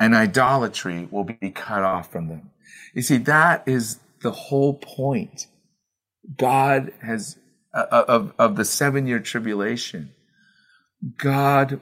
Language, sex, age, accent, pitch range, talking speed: English, male, 40-59, American, 100-135 Hz, 120 wpm